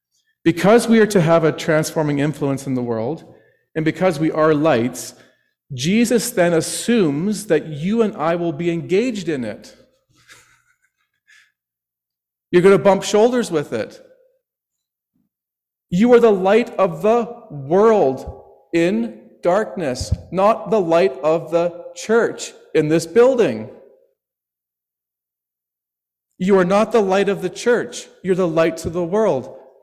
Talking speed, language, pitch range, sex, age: 135 wpm, English, 130-210 Hz, male, 40-59